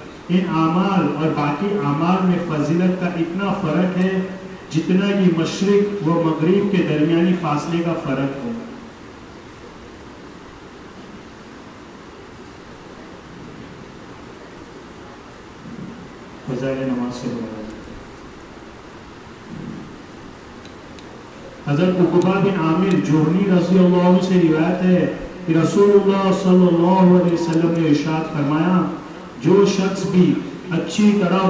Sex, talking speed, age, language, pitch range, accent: male, 85 wpm, 50-69, English, 165-195 Hz, Indian